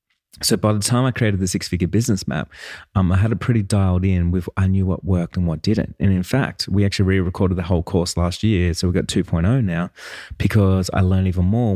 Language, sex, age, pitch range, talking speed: English, male, 30-49, 90-105 Hz, 235 wpm